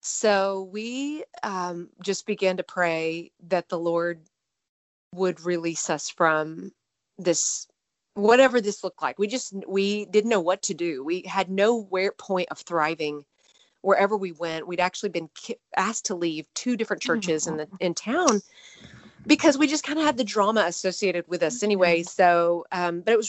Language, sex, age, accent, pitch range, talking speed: English, female, 30-49, American, 170-210 Hz, 175 wpm